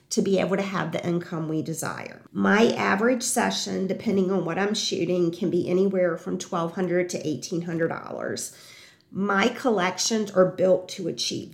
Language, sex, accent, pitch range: English, female, American, 180-220 Hz